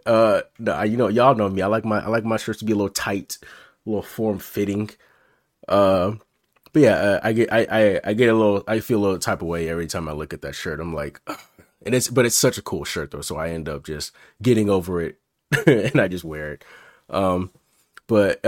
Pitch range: 90-110 Hz